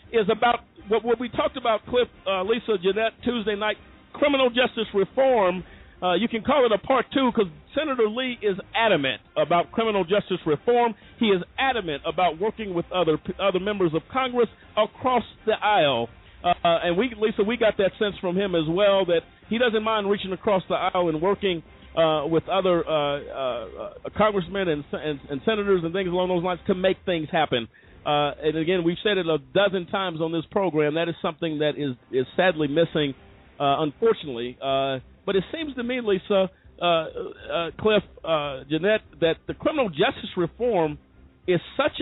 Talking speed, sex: 180 wpm, male